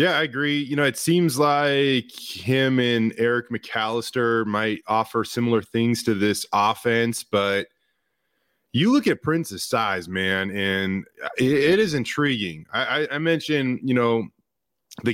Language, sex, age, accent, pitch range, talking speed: English, male, 20-39, American, 115-165 Hz, 145 wpm